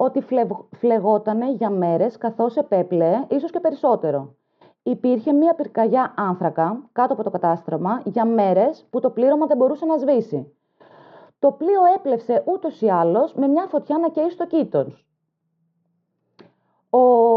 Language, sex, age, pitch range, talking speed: Greek, female, 30-49, 195-285 Hz, 140 wpm